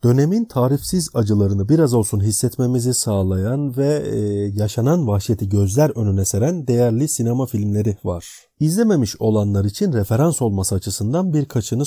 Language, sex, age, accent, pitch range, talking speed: Turkish, male, 40-59, native, 105-150 Hz, 125 wpm